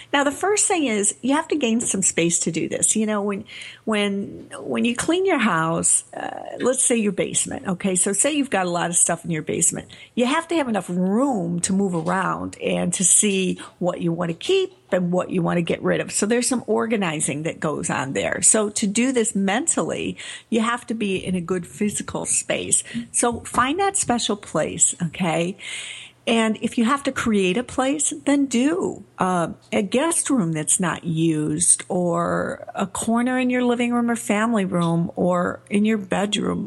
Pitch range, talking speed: 175-235 Hz, 205 wpm